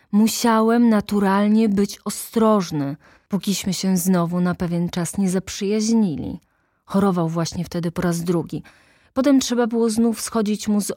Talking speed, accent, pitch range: 135 wpm, native, 170-225 Hz